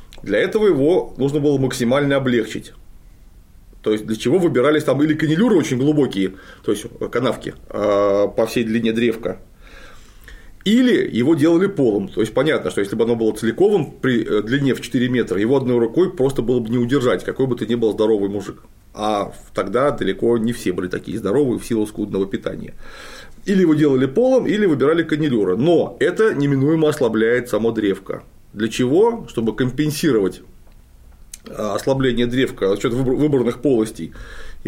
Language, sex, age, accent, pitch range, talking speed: Russian, male, 30-49, native, 110-150 Hz, 160 wpm